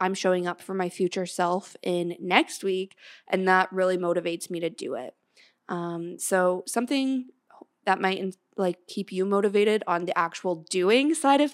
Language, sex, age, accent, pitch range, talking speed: English, female, 20-39, American, 180-205 Hz, 175 wpm